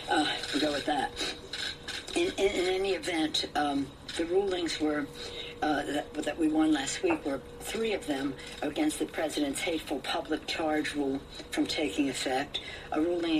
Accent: American